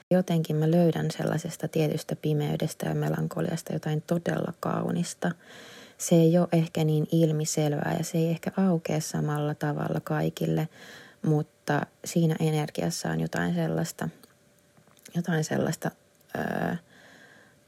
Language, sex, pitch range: Finnish, female, 150-170 Hz